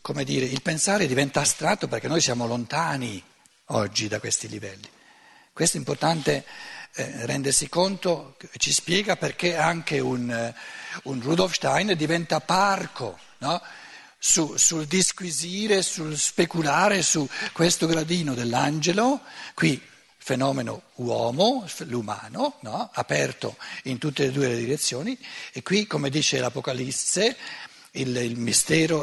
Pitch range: 130-180 Hz